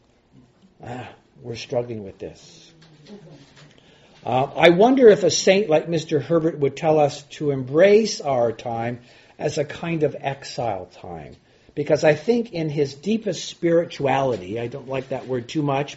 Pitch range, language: 120-160 Hz, English